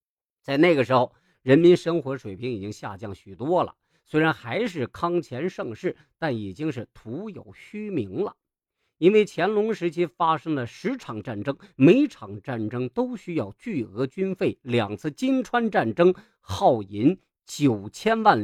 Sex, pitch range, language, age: male, 120-185 Hz, Chinese, 50-69